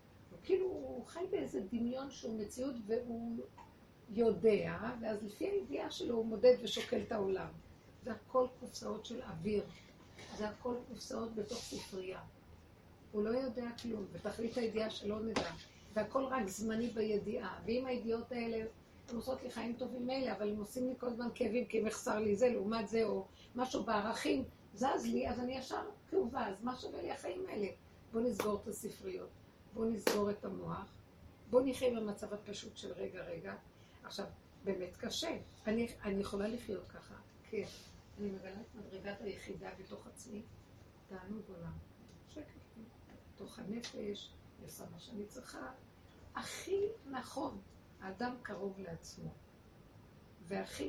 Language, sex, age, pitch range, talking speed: Hebrew, female, 50-69, 205-245 Hz, 145 wpm